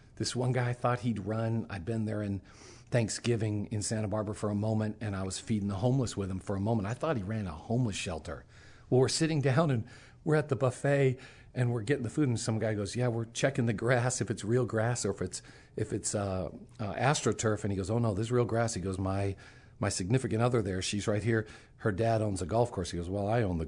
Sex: male